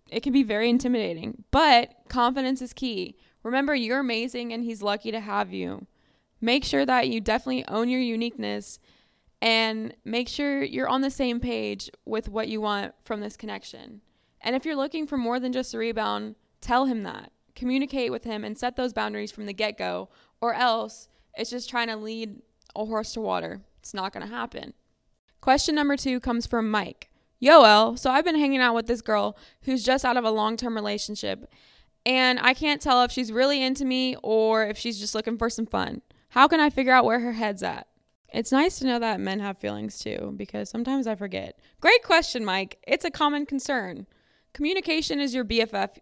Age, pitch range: 20-39, 215-260 Hz